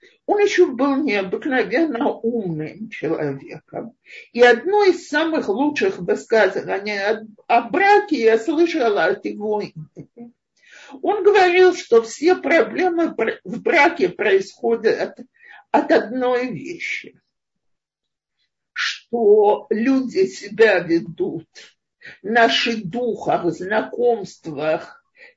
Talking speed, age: 90 wpm, 50-69